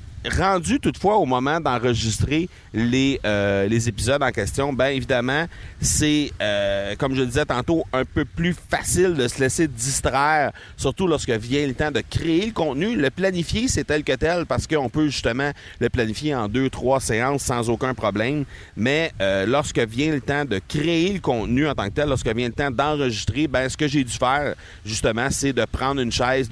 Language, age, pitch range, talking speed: French, 30-49, 105-130 Hz, 195 wpm